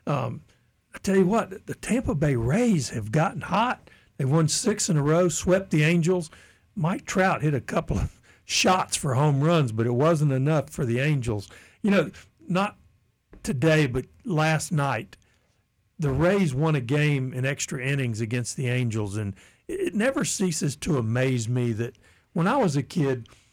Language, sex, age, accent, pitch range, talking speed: English, male, 60-79, American, 120-170 Hz, 175 wpm